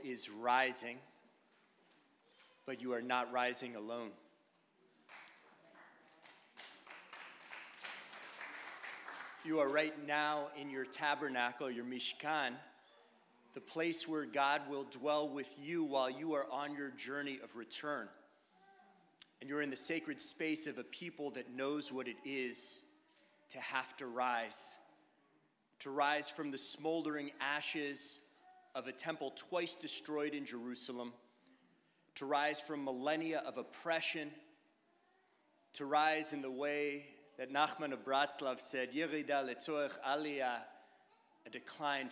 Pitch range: 130-155 Hz